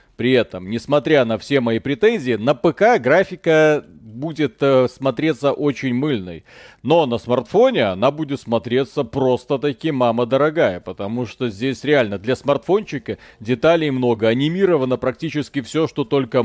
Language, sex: Russian, male